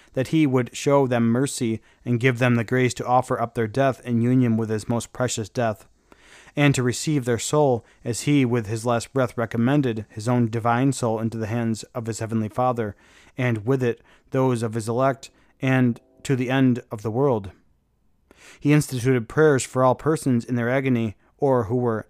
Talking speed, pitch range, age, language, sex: 195 wpm, 115-135 Hz, 30-49, English, male